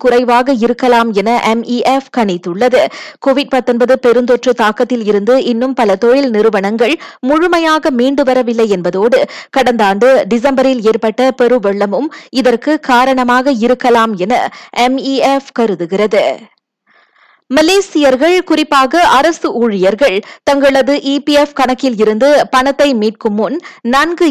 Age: 20-39